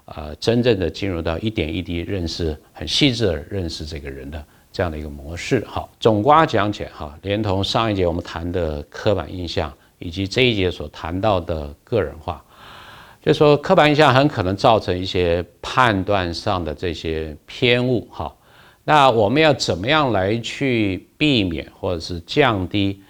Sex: male